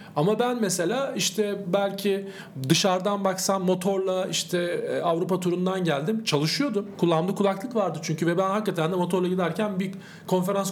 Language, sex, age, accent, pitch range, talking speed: Turkish, male, 40-59, native, 170-205 Hz, 140 wpm